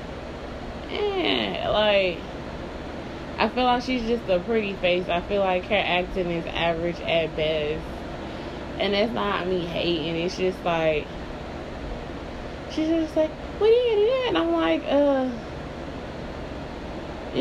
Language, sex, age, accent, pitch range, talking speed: English, female, 20-39, American, 165-210 Hz, 130 wpm